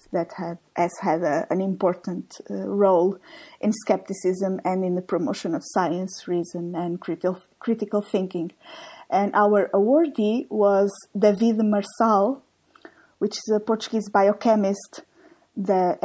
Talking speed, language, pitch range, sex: 125 wpm, English, 190-220 Hz, female